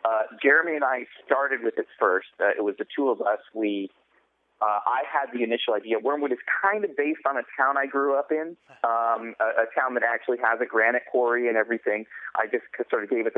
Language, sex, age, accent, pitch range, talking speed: English, male, 30-49, American, 100-140 Hz, 235 wpm